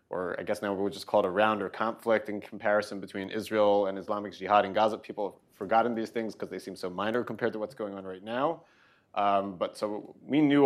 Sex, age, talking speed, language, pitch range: male, 30-49, 235 wpm, English, 100-115 Hz